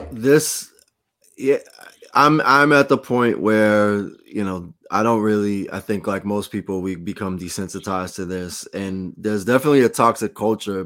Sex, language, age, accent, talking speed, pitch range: male, English, 20-39, American, 160 wpm, 95-110 Hz